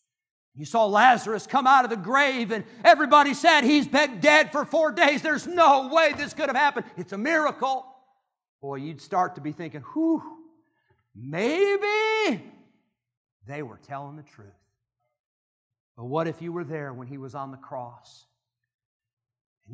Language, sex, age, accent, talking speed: English, male, 50-69, American, 160 wpm